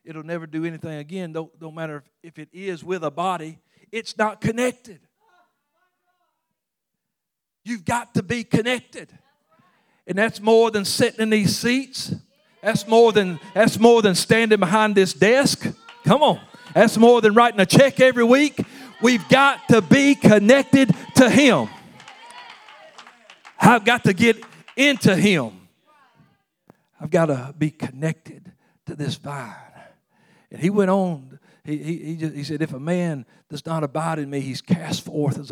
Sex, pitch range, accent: male, 155-215 Hz, American